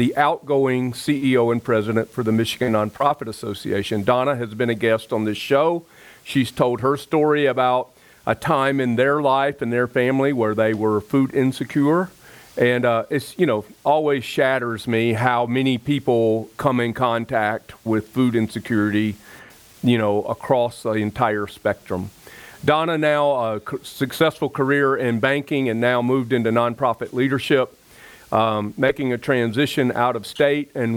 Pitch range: 120-160 Hz